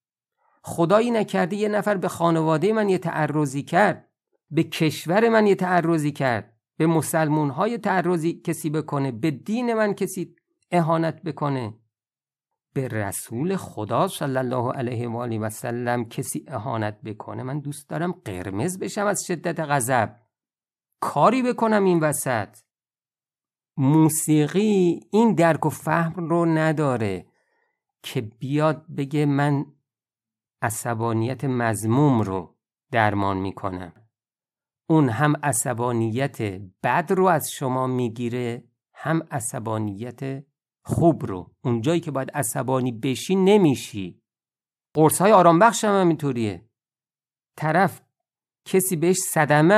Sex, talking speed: male, 115 wpm